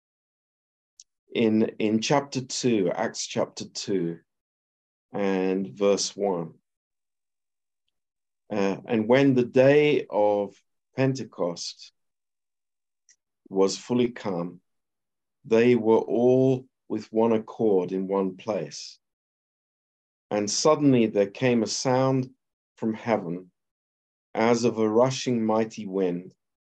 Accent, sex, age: British, male, 50-69